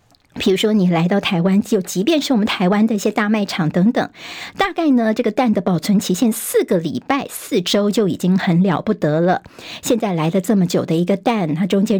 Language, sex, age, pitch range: Chinese, male, 50-69, 190-245 Hz